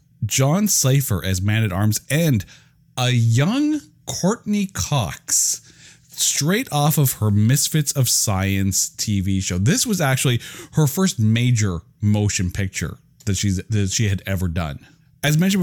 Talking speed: 135 wpm